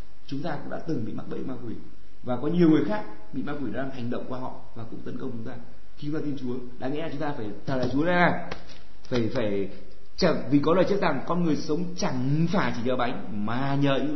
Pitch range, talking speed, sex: 125-205 Hz, 255 wpm, male